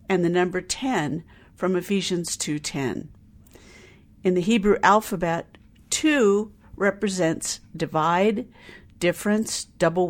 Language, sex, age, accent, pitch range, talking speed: English, female, 50-69, American, 165-220 Hz, 95 wpm